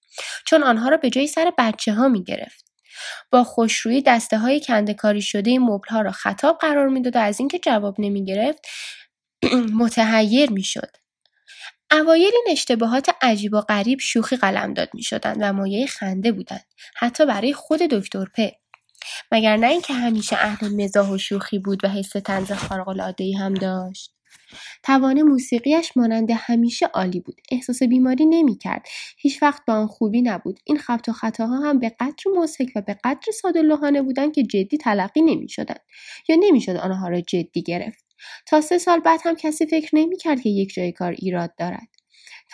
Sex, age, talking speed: female, 10-29, 170 wpm